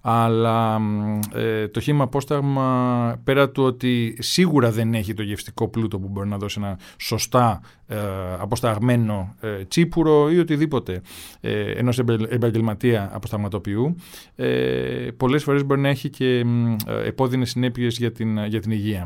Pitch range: 110-135 Hz